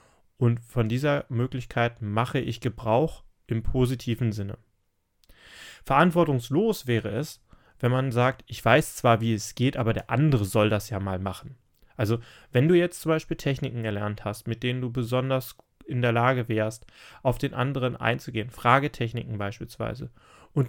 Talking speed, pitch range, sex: 155 wpm, 115-135 Hz, male